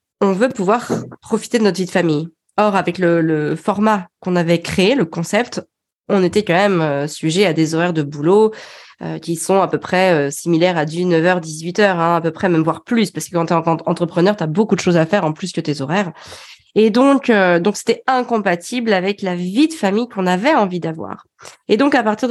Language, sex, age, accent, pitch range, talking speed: French, female, 20-39, French, 170-215 Hz, 230 wpm